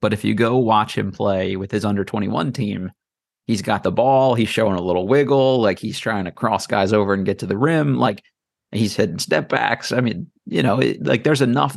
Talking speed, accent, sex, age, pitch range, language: 240 wpm, American, male, 30-49, 100-125 Hz, English